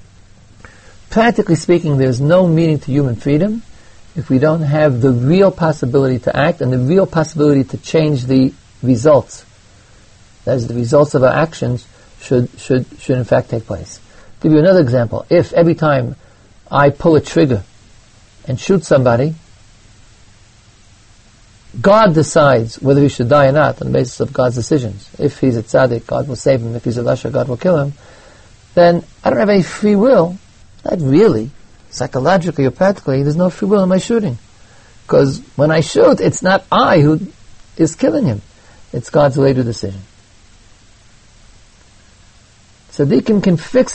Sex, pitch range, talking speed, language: male, 105-160 Hz, 165 wpm, English